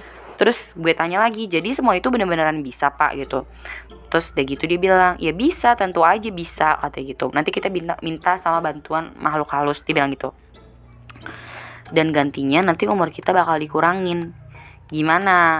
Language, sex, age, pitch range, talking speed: Indonesian, female, 20-39, 145-200 Hz, 160 wpm